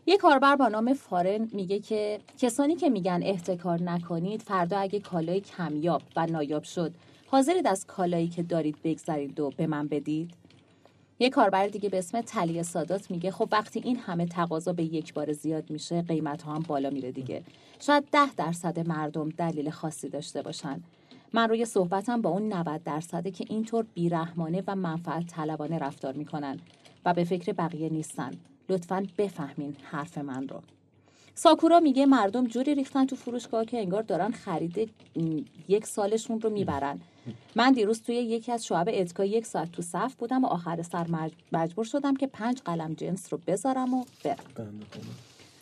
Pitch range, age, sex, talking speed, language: 155-225 Hz, 30-49, female, 165 wpm, Persian